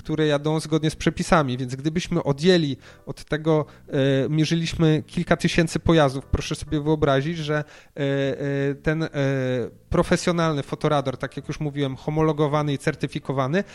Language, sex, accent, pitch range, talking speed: Polish, male, native, 140-160 Hz, 120 wpm